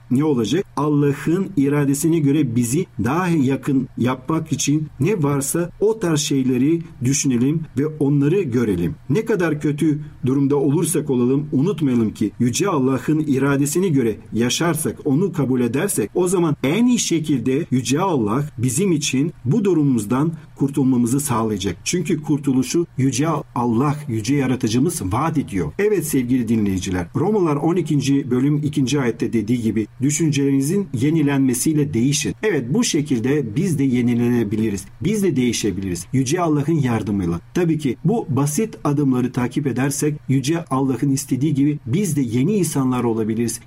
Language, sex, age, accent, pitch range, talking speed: Turkish, male, 50-69, native, 125-155 Hz, 135 wpm